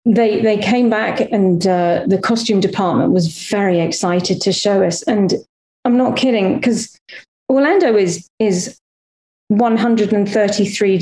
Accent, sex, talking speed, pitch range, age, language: British, female, 130 wpm, 190-235 Hz, 40-59, English